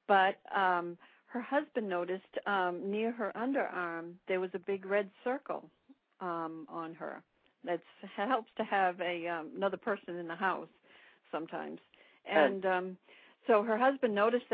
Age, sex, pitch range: 60-79, female, 175-215 Hz